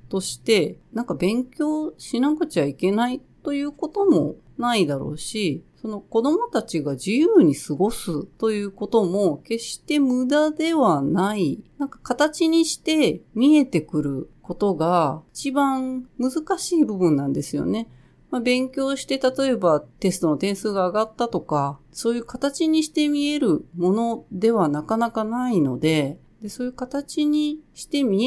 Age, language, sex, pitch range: 40-59, Japanese, female, 170-250 Hz